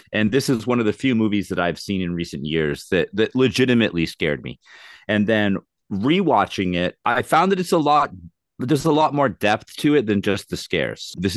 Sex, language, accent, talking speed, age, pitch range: male, English, American, 215 wpm, 30-49, 85-115 Hz